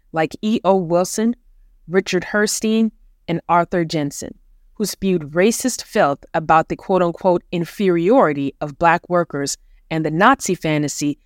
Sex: female